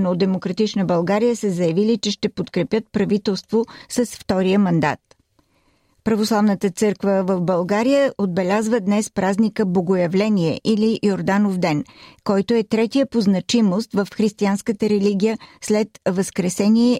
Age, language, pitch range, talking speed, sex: 40-59, Bulgarian, 190-225 Hz, 115 wpm, female